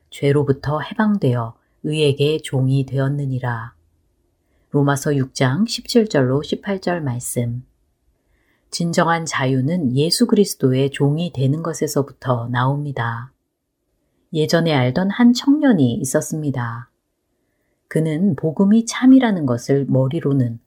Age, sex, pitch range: 30-49, female, 130-175 Hz